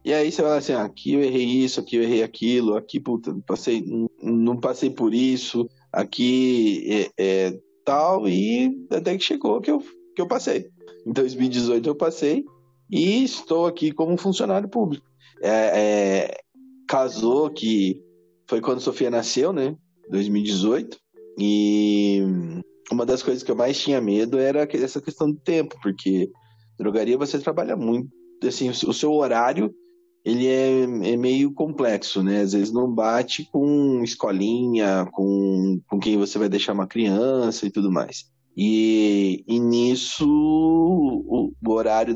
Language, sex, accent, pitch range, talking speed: Portuguese, male, Brazilian, 100-135 Hz, 145 wpm